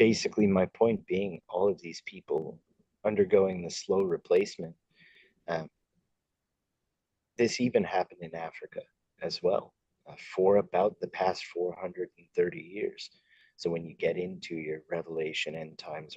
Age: 30-49